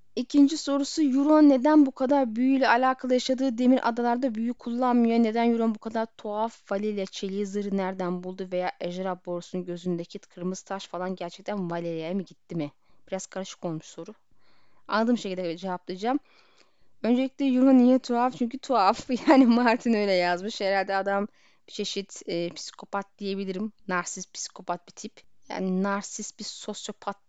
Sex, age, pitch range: female, 10-29, 185-245 Hz